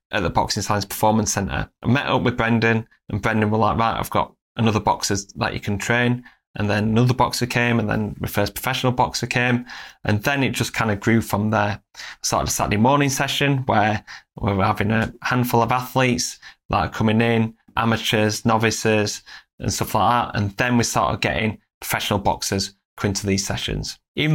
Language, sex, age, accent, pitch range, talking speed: English, male, 20-39, British, 110-125 Hz, 195 wpm